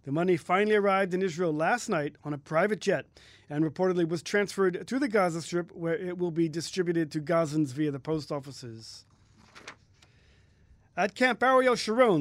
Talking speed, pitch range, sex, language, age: 170 wpm, 150-195 Hz, male, English, 40-59